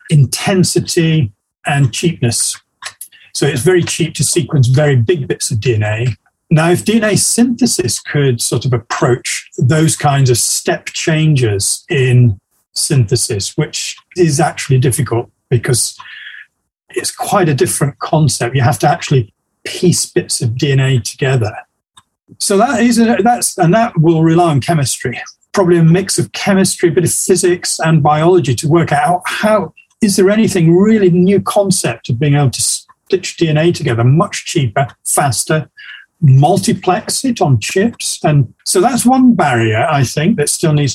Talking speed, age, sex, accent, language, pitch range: 150 wpm, 40-59, male, British, English, 130-180 Hz